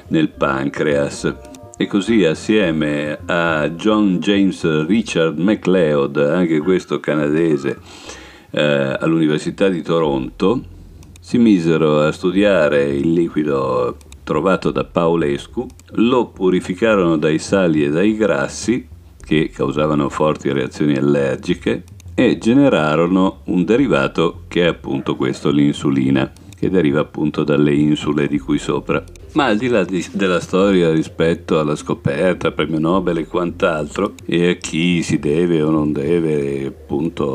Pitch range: 75-90 Hz